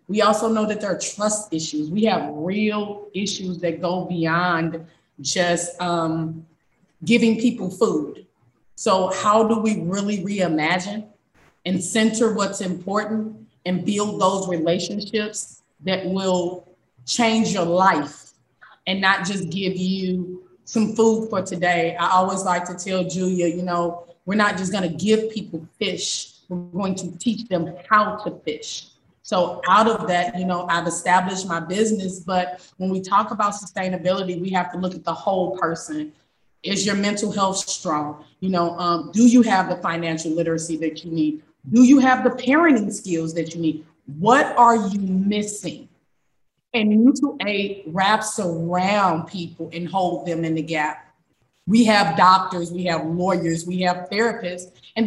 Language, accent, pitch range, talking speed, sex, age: English, American, 170-210 Hz, 160 wpm, female, 20-39